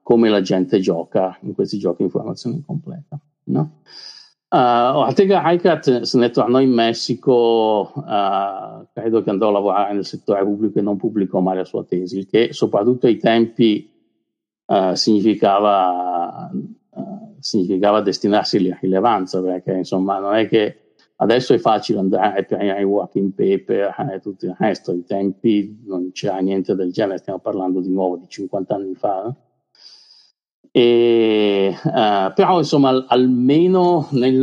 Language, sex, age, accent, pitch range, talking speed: Italian, male, 50-69, native, 95-125 Hz, 150 wpm